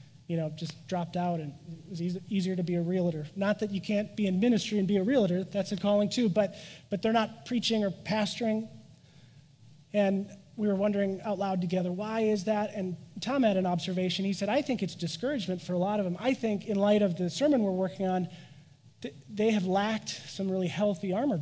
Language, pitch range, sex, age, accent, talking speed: English, 150-205 Hz, male, 30-49, American, 225 wpm